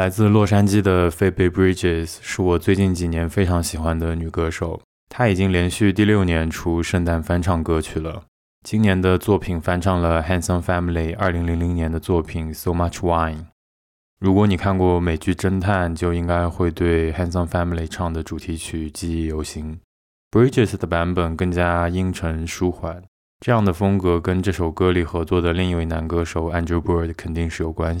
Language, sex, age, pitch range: Chinese, male, 20-39, 80-90 Hz